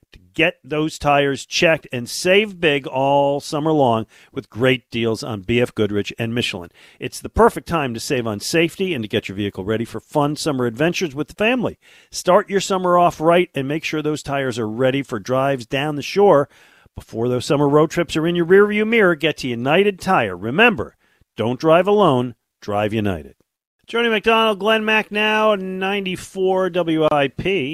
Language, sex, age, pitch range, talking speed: English, male, 50-69, 110-170 Hz, 180 wpm